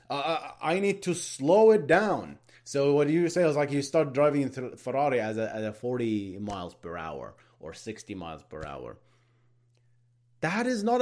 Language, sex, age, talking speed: English, male, 30-49, 190 wpm